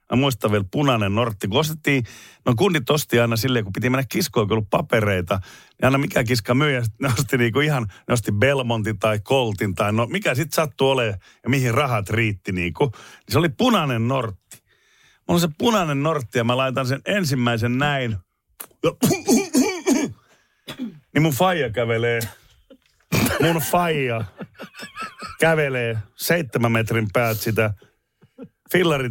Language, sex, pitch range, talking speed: Finnish, male, 110-145 Hz, 140 wpm